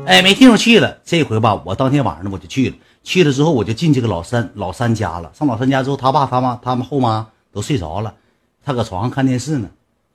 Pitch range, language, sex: 100-140 Hz, Chinese, male